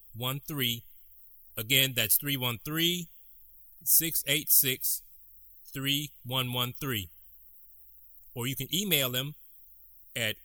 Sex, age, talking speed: male, 30-49, 115 wpm